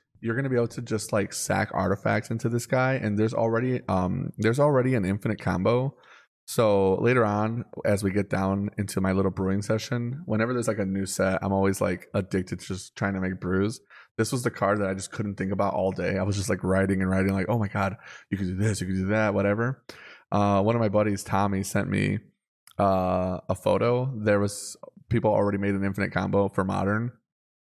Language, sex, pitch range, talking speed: English, male, 95-115 Hz, 225 wpm